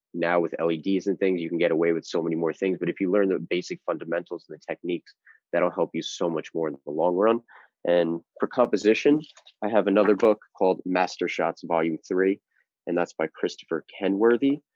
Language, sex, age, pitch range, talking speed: English, male, 30-49, 85-105 Hz, 205 wpm